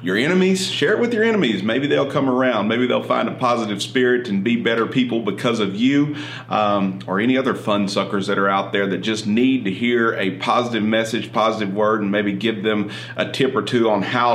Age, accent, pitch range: 30-49, American, 100-125 Hz